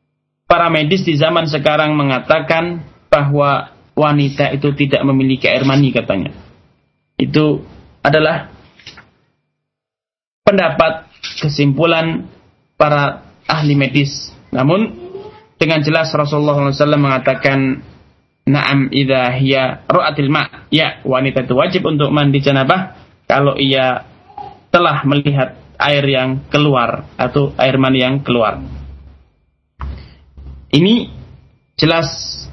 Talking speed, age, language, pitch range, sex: 100 wpm, 20-39, Malay, 135-155 Hz, male